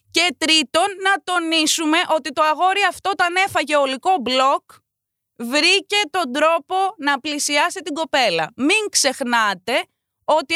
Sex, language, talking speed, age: female, Greek, 125 wpm, 20-39